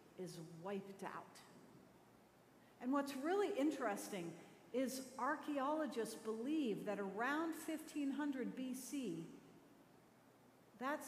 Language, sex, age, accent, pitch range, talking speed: English, female, 50-69, American, 230-305 Hz, 80 wpm